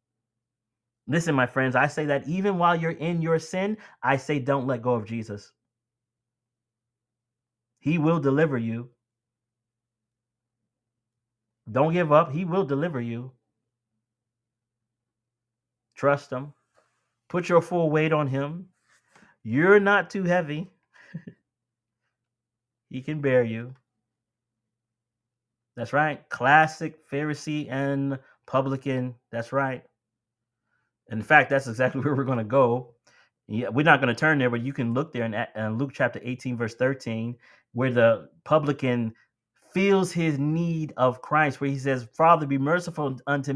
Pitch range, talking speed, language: 120-150 Hz, 130 wpm, English